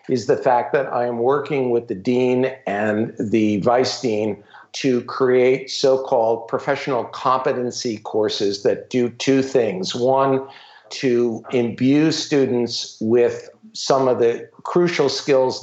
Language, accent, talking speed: English, American, 130 wpm